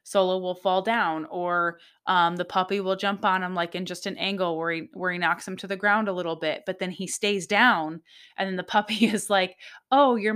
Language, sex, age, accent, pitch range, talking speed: English, female, 20-39, American, 175-225 Hz, 245 wpm